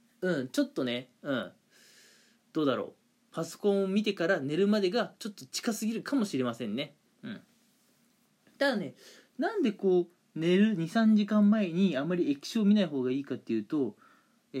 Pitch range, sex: 150-250 Hz, male